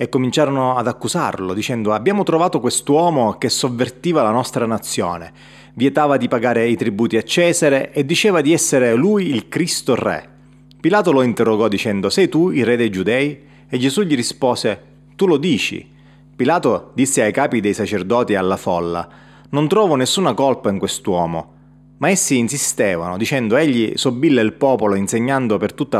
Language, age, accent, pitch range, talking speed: Italian, 30-49, native, 105-140 Hz, 165 wpm